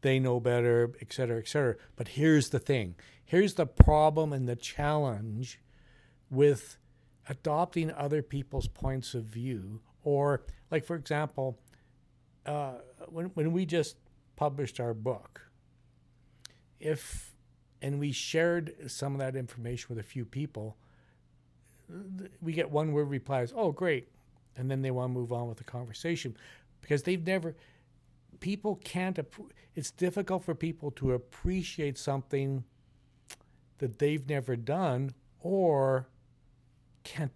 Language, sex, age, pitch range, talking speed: English, male, 60-79, 120-150 Hz, 135 wpm